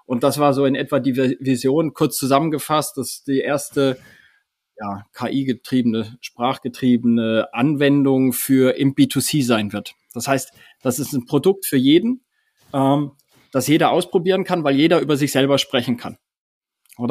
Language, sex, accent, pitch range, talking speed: German, male, German, 130-155 Hz, 155 wpm